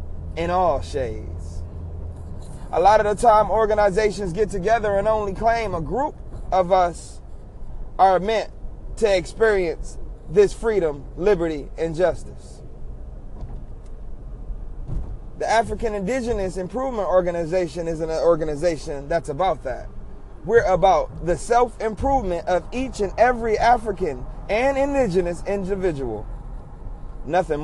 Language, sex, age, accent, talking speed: English, male, 30-49, American, 110 wpm